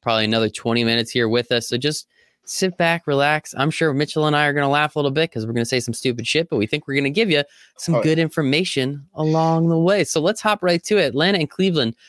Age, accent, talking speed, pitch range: 20-39, American, 255 wpm, 110-155 Hz